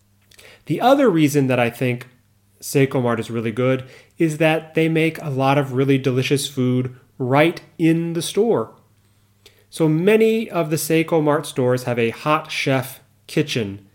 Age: 30-49